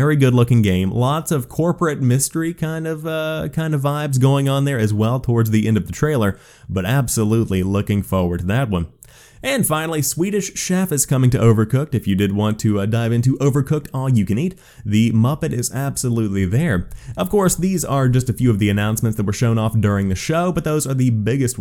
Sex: male